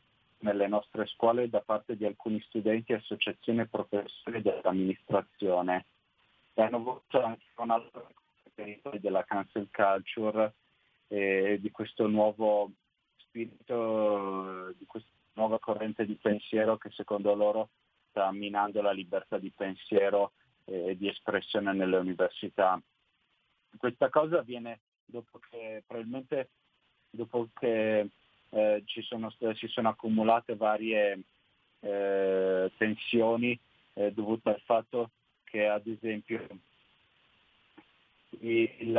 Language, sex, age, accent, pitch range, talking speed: Italian, male, 30-49, native, 105-115 Hz, 110 wpm